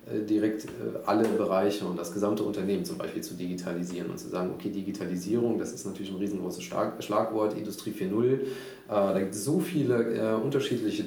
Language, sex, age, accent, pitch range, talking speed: German, male, 30-49, German, 100-115 Hz, 175 wpm